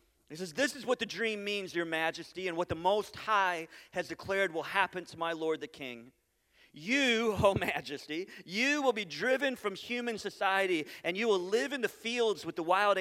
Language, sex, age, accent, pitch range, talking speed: English, male, 30-49, American, 135-220 Hz, 205 wpm